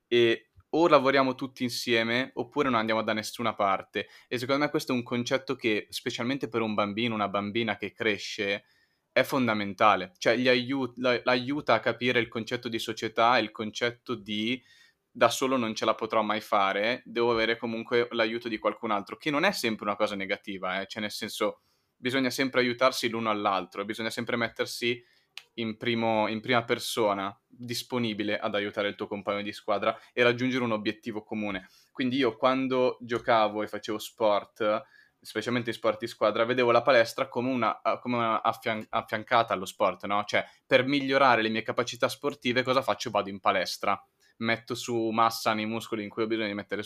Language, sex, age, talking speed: Italian, male, 20-39, 180 wpm